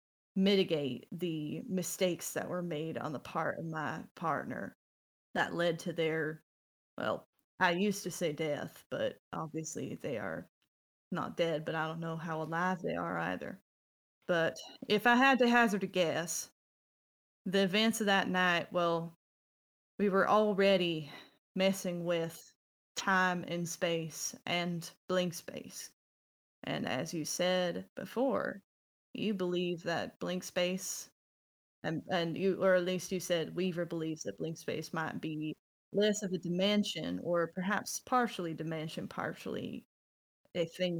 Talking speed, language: 145 wpm, English